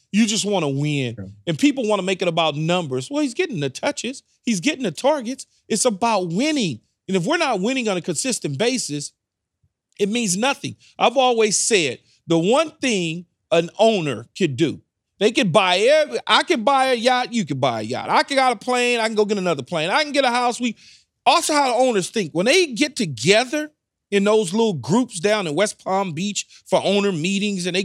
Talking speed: 220 wpm